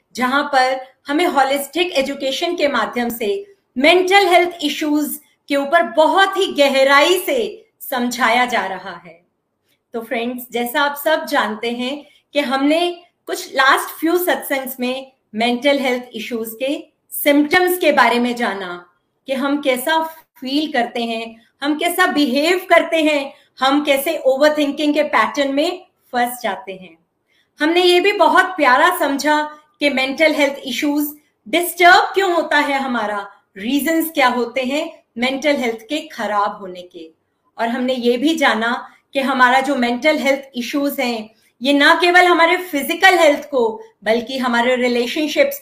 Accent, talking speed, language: native, 145 wpm, Hindi